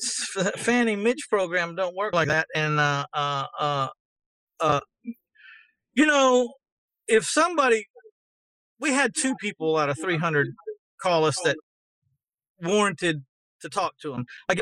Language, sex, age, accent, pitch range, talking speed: English, male, 40-59, American, 155-220 Hz, 130 wpm